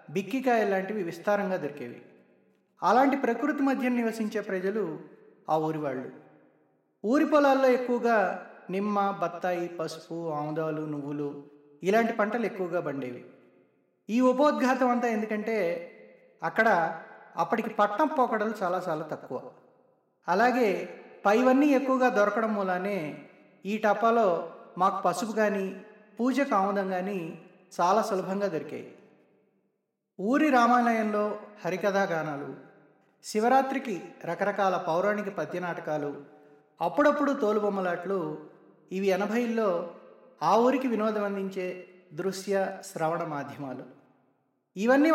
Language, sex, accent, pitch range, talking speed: Telugu, male, native, 175-245 Hz, 90 wpm